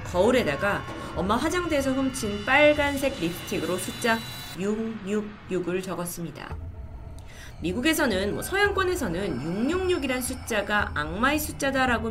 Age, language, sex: 30-49, Korean, female